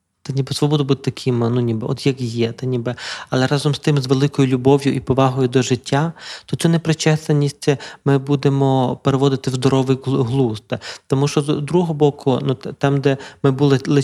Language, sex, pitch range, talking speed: Ukrainian, male, 130-145 Hz, 185 wpm